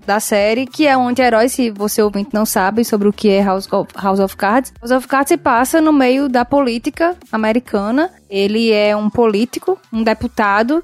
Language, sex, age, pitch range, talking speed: Portuguese, female, 10-29, 225-290 Hz, 195 wpm